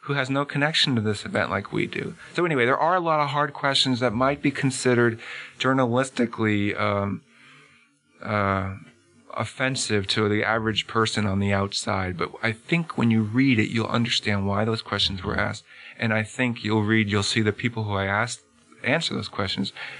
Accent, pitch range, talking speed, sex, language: American, 100-120 Hz, 190 wpm, male, English